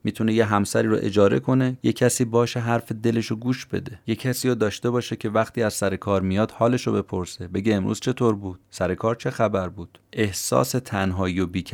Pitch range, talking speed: 95-115 Hz, 205 wpm